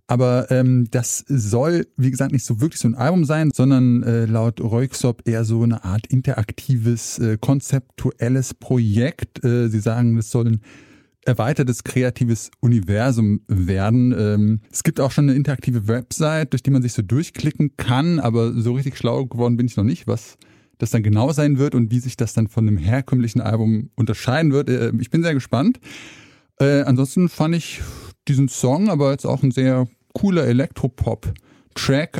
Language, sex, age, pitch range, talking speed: German, male, 20-39, 115-145 Hz, 175 wpm